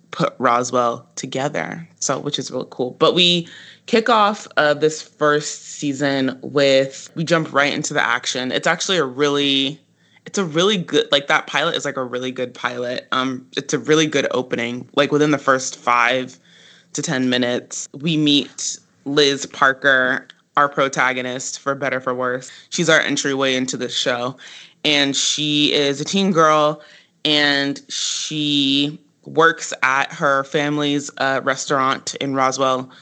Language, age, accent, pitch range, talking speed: English, 20-39, American, 130-155 Hz, 160 wpm